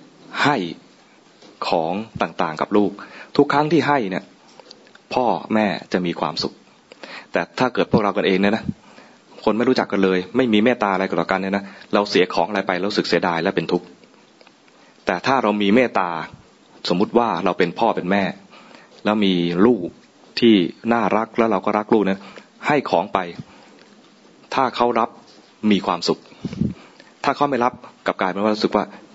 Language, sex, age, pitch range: English, male, 20-39, 95-115 Hz